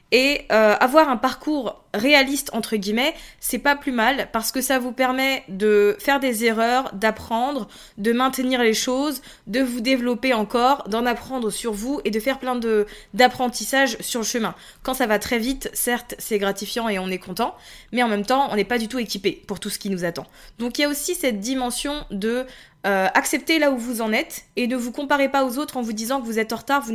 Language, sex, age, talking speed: French, female, 20-39, 225 wpm